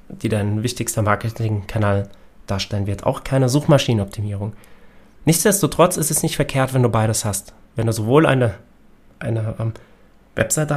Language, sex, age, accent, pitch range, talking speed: German, male, 30-49, German, 110-150 Hz, 135 wpm